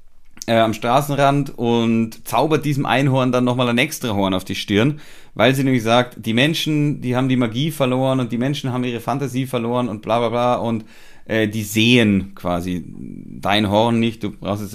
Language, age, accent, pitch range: German, 30-49, German, 105-130 Hz